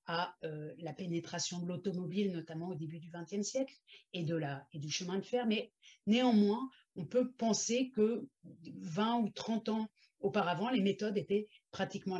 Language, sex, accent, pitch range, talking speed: French, female, French, 170-210 Hz, 170 wpm